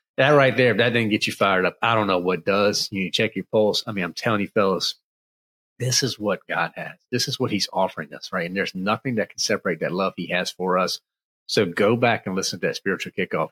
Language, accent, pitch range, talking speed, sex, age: English, American, 105-135 Hz, 265 wpm, male, 40-59